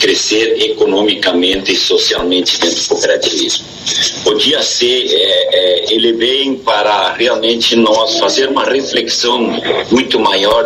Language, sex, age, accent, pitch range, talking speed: Portuguese, male, 50-69, Brazilian, 300-445 Hz, 120 wpm